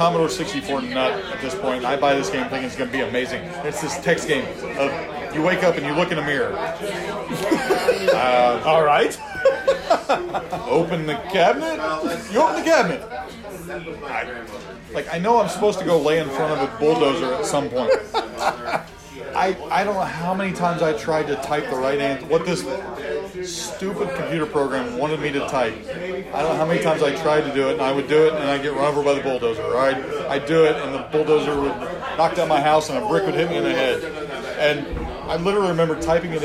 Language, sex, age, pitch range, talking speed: English, male, 40-59, 150-195 Hz, 210 wpm